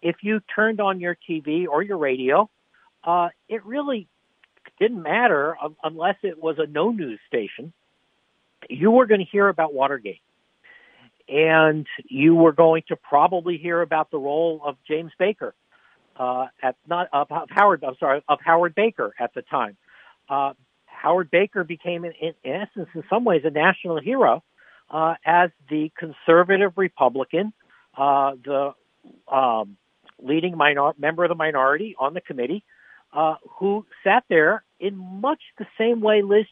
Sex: male